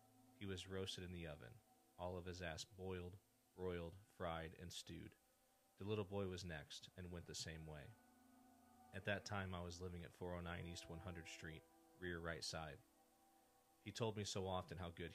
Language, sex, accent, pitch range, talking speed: English, male, American, 80-95 Hz, 180 wpm